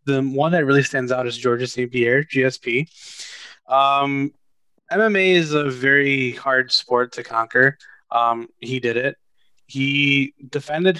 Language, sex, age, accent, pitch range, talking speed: English, male, 20-39, American, 125-150 Hz, 140 wpm